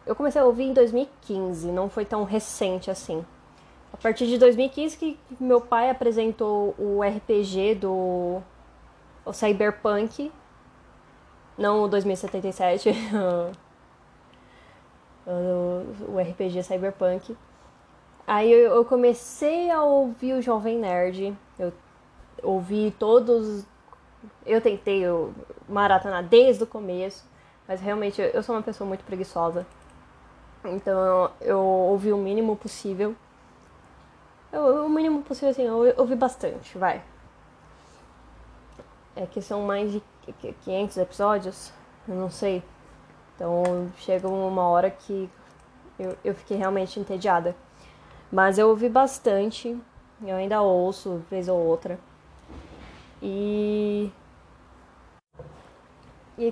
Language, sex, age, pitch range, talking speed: Portuguese, female, 10-29, 185-235 Hz, 110 wpm